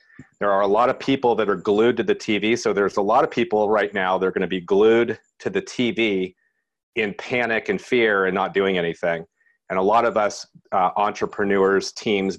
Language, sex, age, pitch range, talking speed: English, male, 40-59, 95-110 Hz, 215 wpm